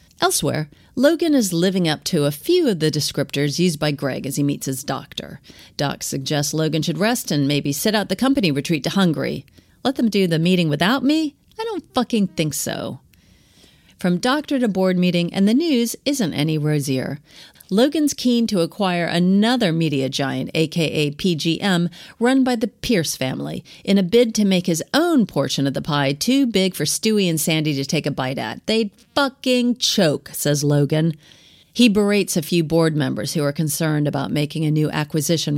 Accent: American